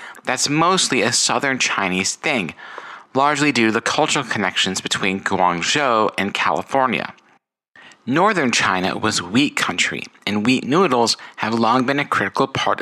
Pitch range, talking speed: 100-135 Hz, 140 wpm